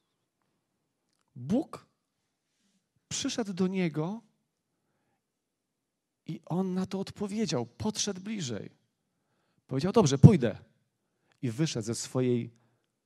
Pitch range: 125-185 Hz